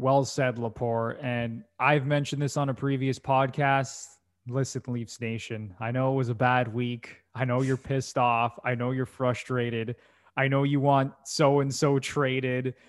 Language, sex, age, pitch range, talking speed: English, male, 20-39, 115-145 Hz, 170 wpm